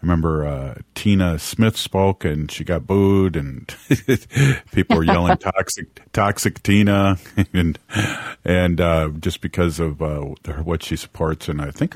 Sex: male